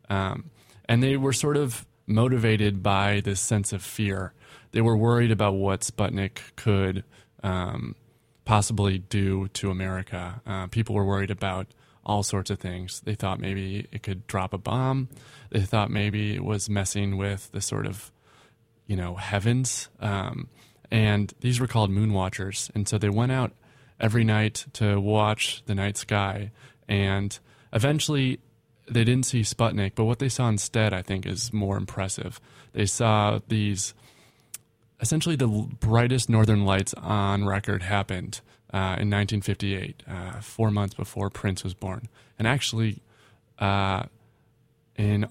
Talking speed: 150 wpm